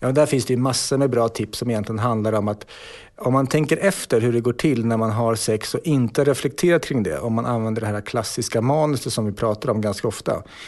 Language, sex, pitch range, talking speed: English, male, 105-130 Hz, 245 wpm